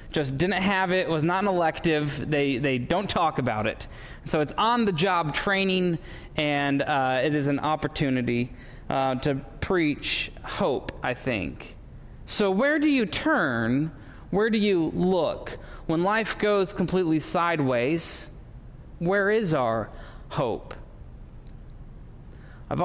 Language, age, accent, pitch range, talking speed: English, 20-39, American, 135-170 Hz, 130 wpm